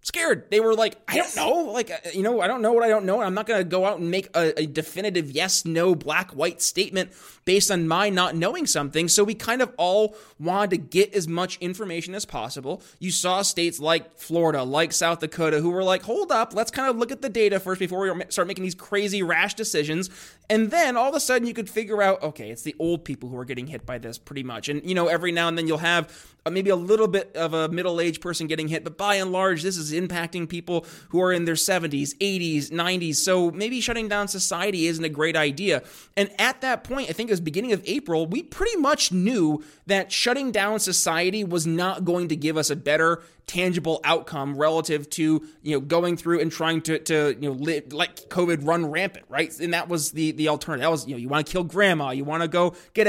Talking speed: 240 wpm